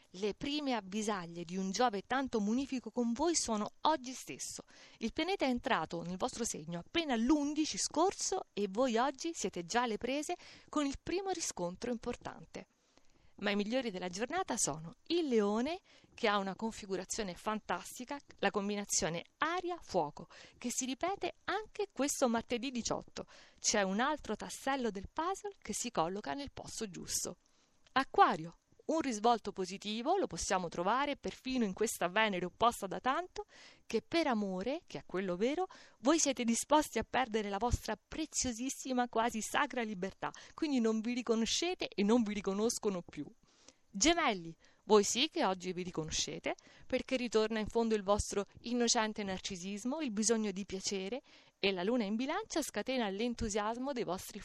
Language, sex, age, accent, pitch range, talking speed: Italian, female, 50-69, native, 200-275 Hz, 155 wpm